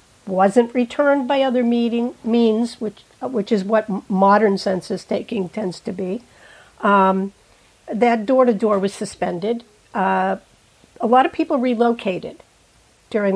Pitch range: 195-235 Hz